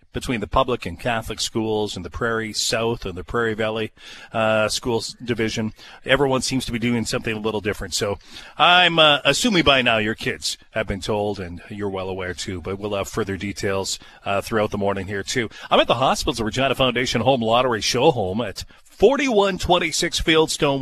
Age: 40-59